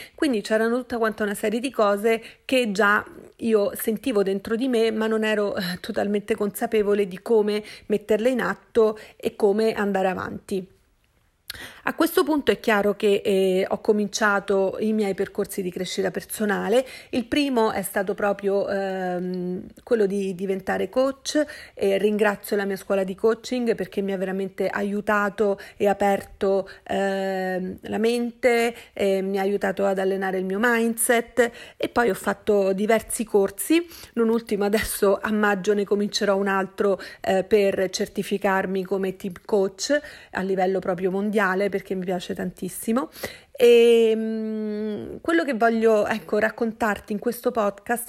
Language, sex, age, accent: Italian, female, 40-59, native